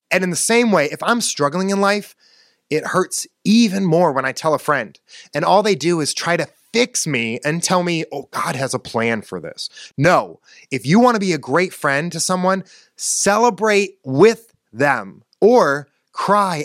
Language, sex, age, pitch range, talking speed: English, male, 30-49, 140-190 Hz, 195 wpm